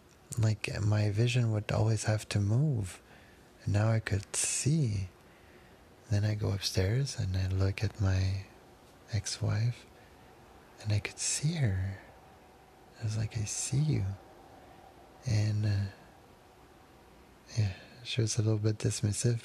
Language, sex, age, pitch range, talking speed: English, male, 30-49, 105-115 Hz, 135 wpm